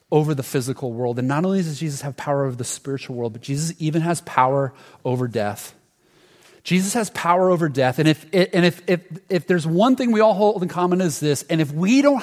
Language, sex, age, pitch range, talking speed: English, male, 30-49, 130-175 Hz, 230 wpm